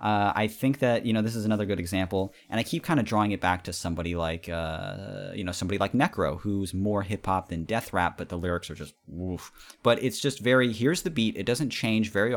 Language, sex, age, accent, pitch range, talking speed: English, male, 30-49, American, 95-125 Hz, 245 wpm